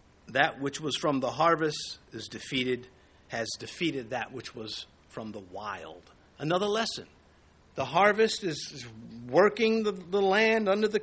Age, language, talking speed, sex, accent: 50-69, English, 150 wpm, male, American